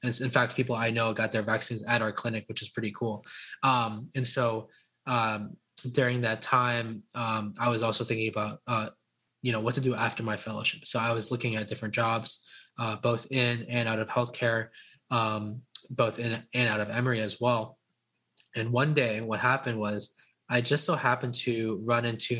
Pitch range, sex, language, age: 110-125 Hz, male, English, 20-39